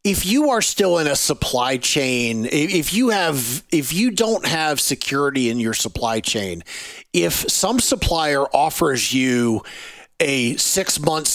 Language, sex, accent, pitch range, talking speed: English, male, American, 125-160 Hz, 145 wpm